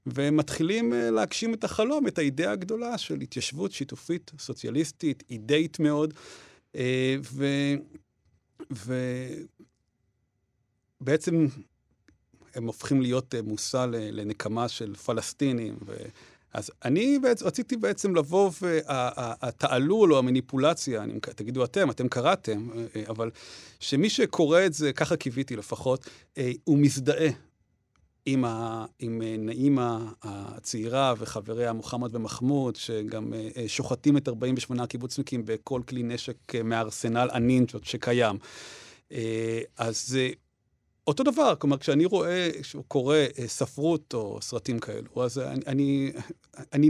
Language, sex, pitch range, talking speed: Hebrew, male, 115-150 Hz, 105 wpm